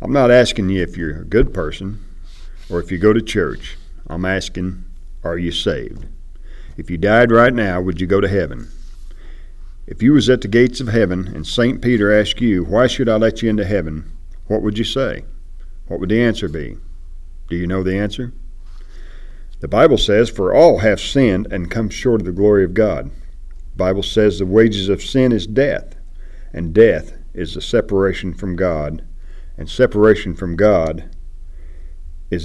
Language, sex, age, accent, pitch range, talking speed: English, male, 50-69, American, 75-110 Hz, 185 wpm